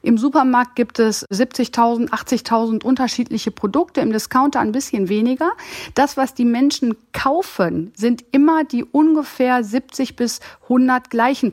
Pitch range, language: 205-260 Hz, German